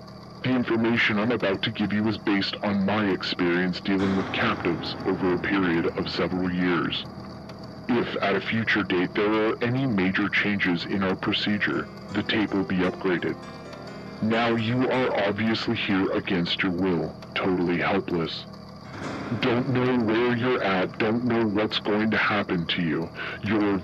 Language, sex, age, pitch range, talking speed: English, female, 40-59, 95-115 Hz, 160 wpm